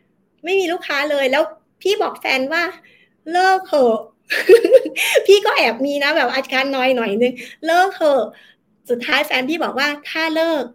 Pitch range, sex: 235-305 Hz, female